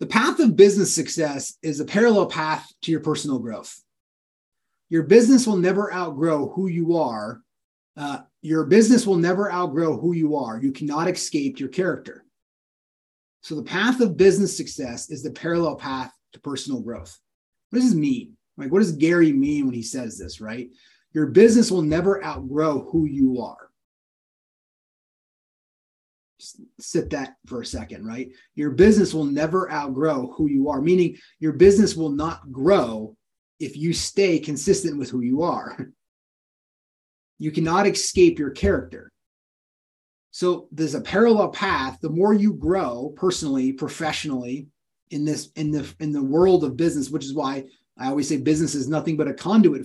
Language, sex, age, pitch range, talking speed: English, male, 30-49, 140-195 Hz, 165 wpm